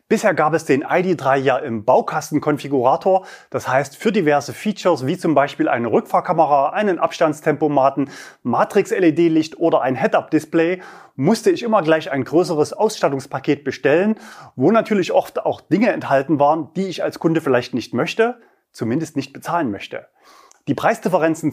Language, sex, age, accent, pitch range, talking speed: German, male, 30-49, German, 140-200 Hz, 145 wpm